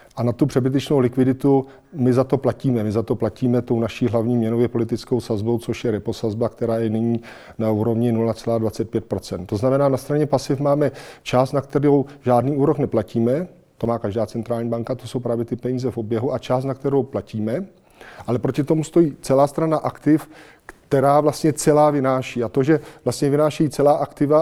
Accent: native